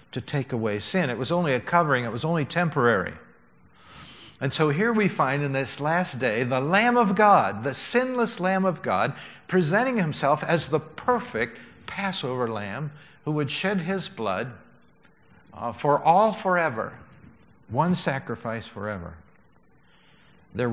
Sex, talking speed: male, 150 wpm